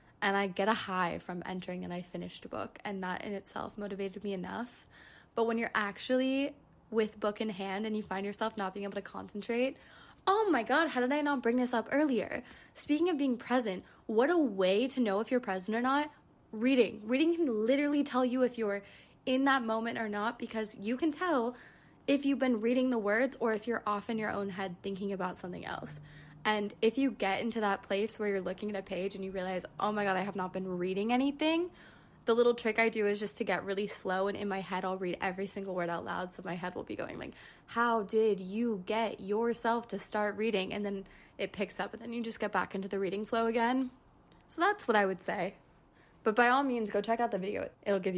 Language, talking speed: English, 240 wpm